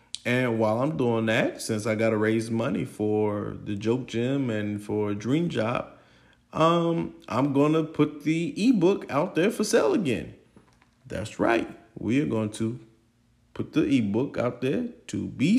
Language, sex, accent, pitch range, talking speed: English, male, American, 105-135 Hz, 170 wpm